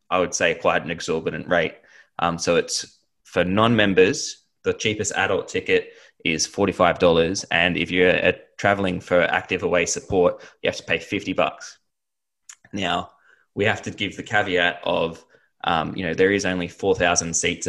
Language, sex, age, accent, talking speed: English, male, 10-29, Australian, 165 wpm